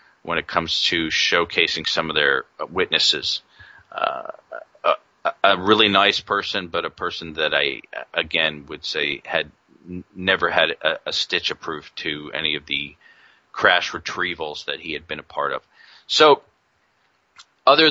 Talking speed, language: 155 wpm, English